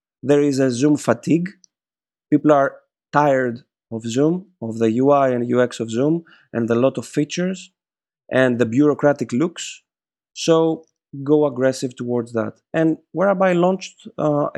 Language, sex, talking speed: English, male, 145 wpm